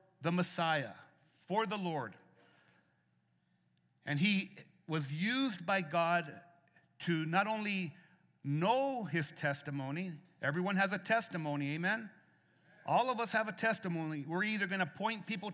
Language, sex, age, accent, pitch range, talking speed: English, male, 50-69, American, 175-230 Hz, 125 wpm